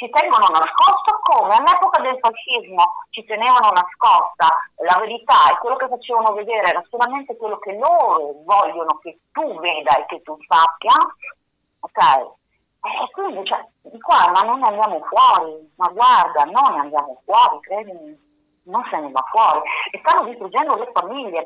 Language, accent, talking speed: Italian, native, 155 wpm